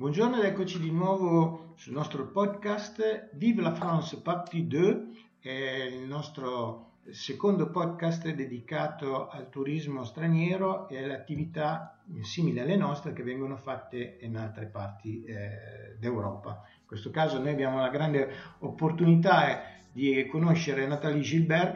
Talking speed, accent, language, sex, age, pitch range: 130 wpm, native, Italian, male, 50-69, 125-170 Hz